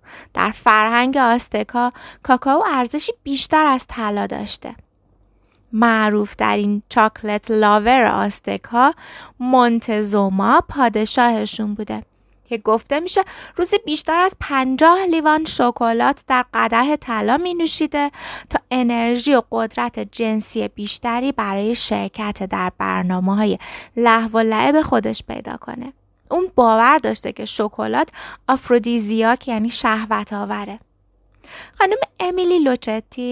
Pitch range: 210-260 Hz